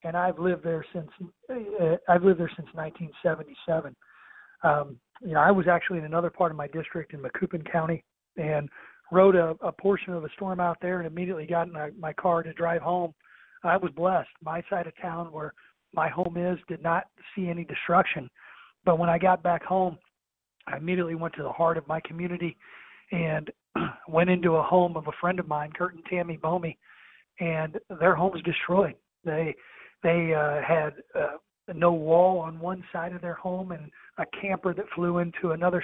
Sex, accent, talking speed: male, American, 195 wpm